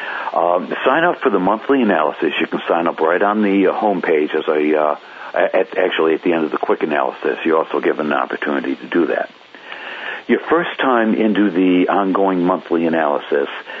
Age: 60-79